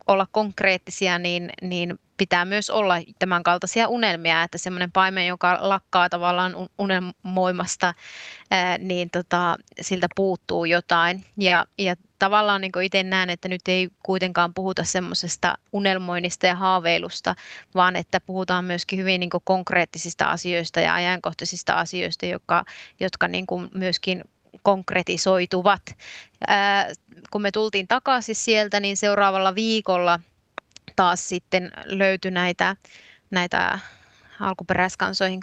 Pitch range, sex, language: 180-195 Hz, female, Finnish